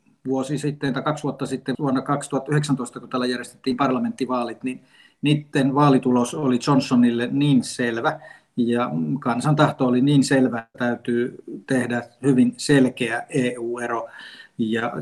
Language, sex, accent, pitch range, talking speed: Finnish, male, native, 120-140 Hz, 130 wpm